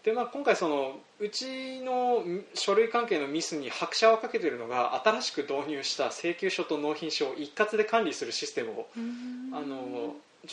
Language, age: Japanese, 20-39